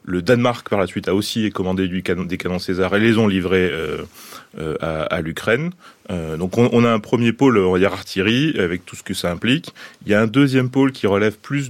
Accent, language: French, French